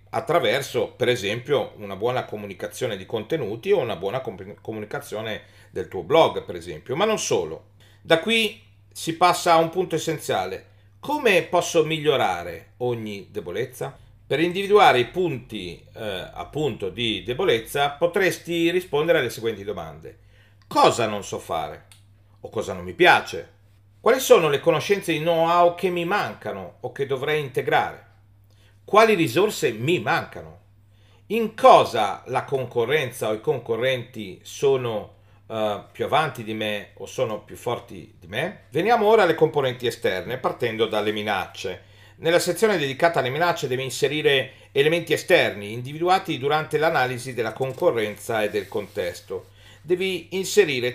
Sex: male